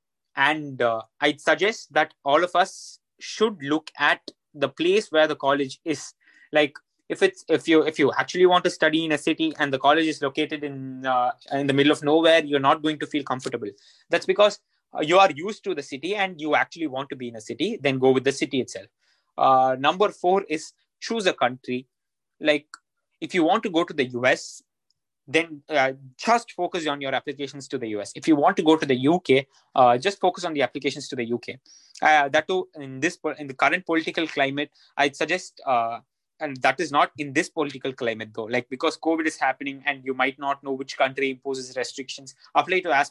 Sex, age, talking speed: male, 20-39, 215 wpm